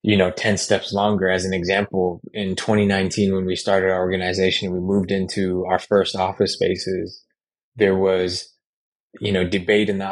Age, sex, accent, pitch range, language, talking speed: 20-39, male, American, 95-100 Hz, English, 170 wpm